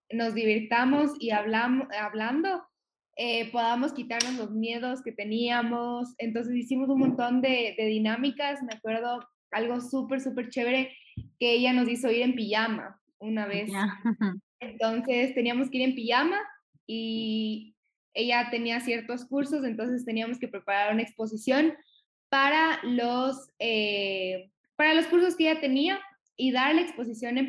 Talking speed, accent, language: 140 wpm, Mexican, Spanish